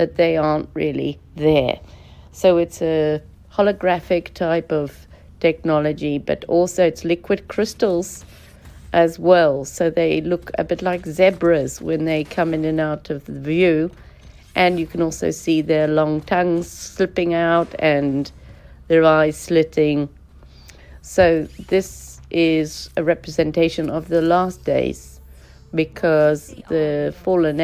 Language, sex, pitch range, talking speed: English, female, 145-175 Hz, 130 wpm